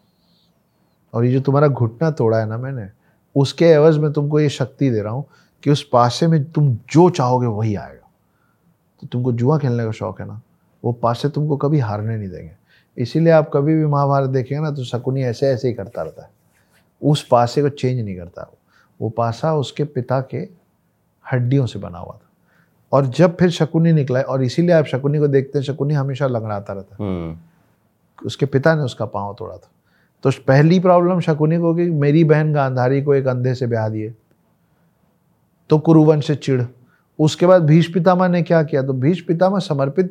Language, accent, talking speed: Hindi, native, 190 wpm